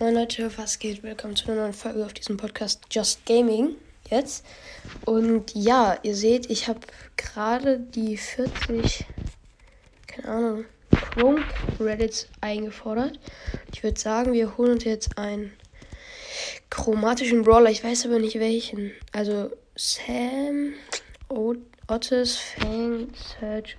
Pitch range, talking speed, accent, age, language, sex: 210-235 Hz, 120 wpm, German, 10-29, German, female